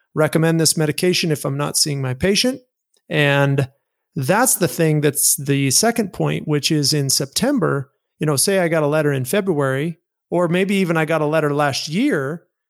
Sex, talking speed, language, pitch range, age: male, 185 wpm, English, 145-180 Hz, 40-59